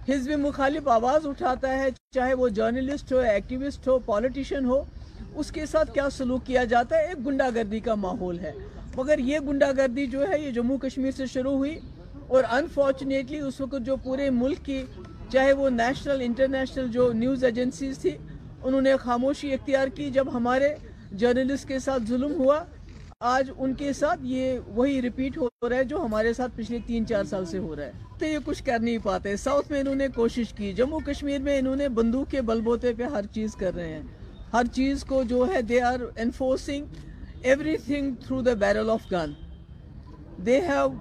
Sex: female